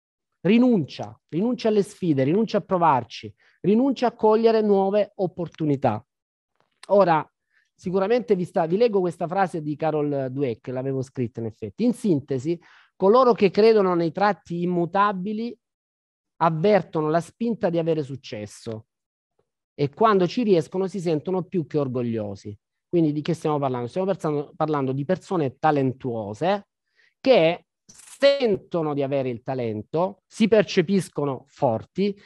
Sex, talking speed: male, 130 wpm